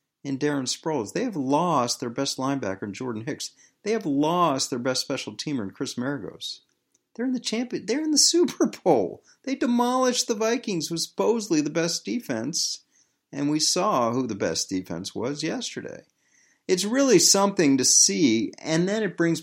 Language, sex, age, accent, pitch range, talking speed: English, male, 40-59, American, 95-145 Hz, 180 wpm